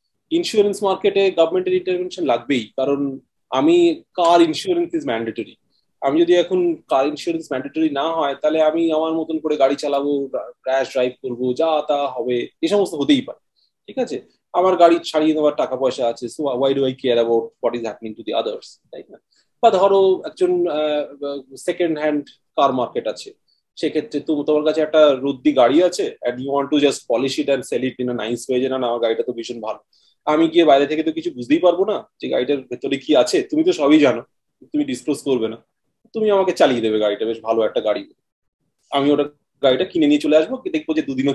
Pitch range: 140-230 Hz